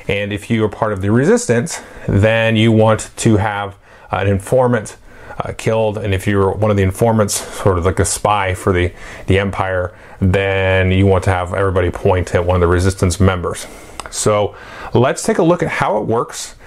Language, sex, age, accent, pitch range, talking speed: English, male, 30-49, American, 100-120 Hz, 200 wpm